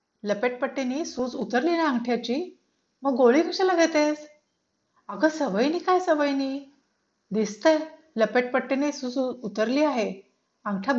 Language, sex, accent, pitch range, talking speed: Marathi, female, native, 215-275 Hz, 105 wpm